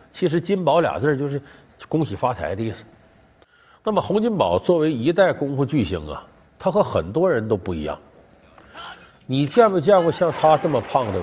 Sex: male